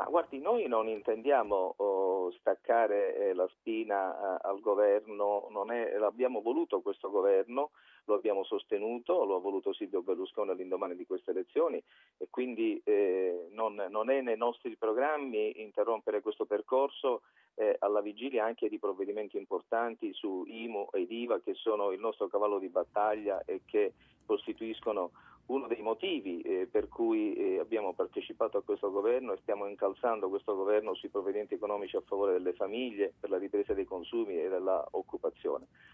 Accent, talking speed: native, 155 wpm